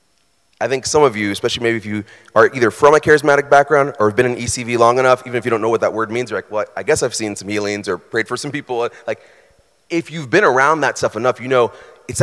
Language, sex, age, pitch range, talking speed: English, male, 30-49, 115-155 Hz, 280 wpm